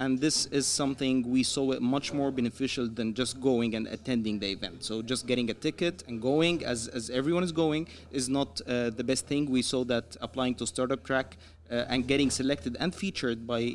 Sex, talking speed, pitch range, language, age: male, 215 wpm, 125-155 Hz, English, 30-49